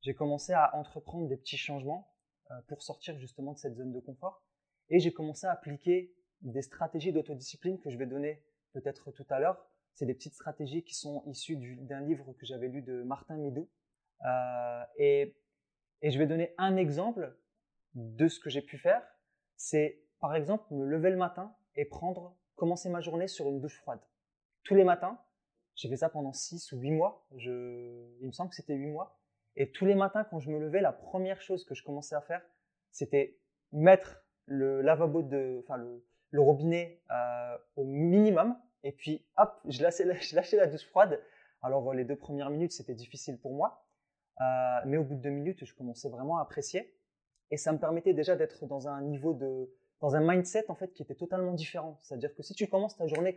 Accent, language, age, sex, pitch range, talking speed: French, French, 20-39, male, 140-180 Hz, 205 wpm